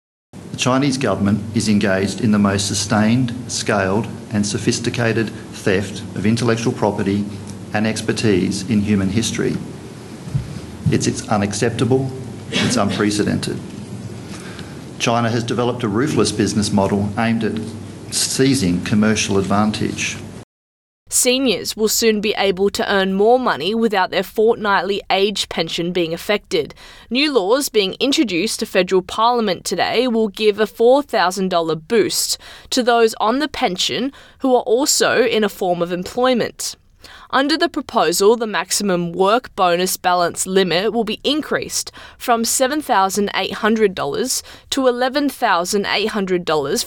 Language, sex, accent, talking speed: English, male, Australian, 125 wpm